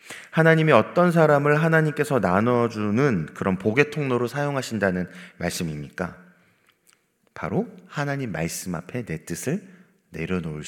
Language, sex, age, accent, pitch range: Korean, male, 30-49, native, 90-145 Hz